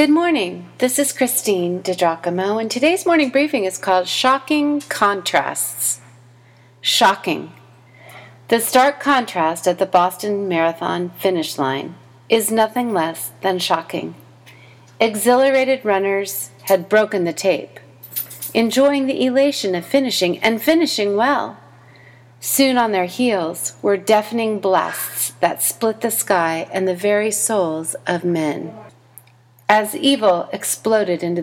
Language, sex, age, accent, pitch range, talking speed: English, female, 40-59, American, 165-225 Hz, 120 wpm